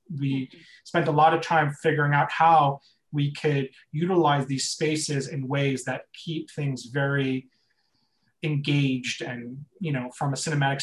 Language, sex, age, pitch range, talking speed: English, male, 30-49, 140-165 Hz, 150 wpm